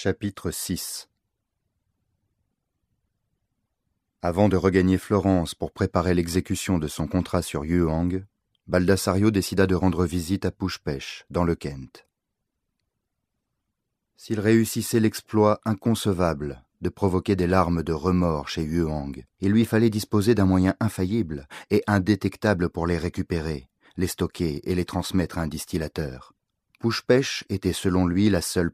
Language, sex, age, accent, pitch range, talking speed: French, male, 30-49, French, 85-100 Hz, 130 wpm